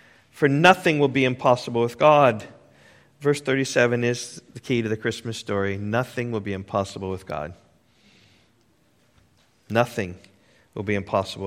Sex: male